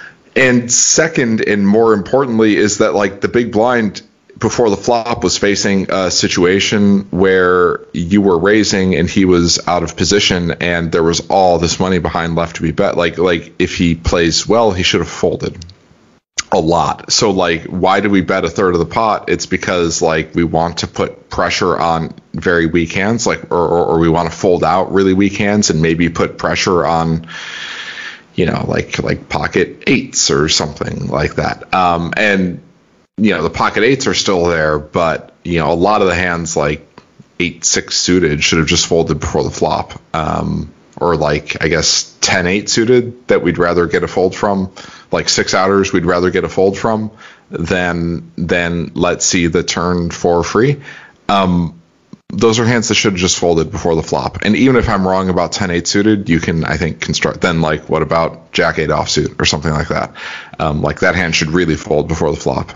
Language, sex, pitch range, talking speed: English, male, 85-100 Hz, 195 wpm